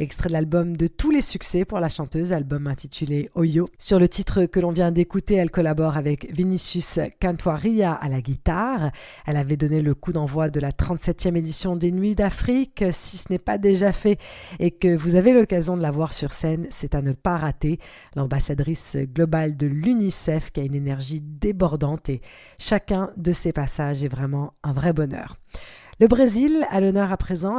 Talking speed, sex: 190 wpm, female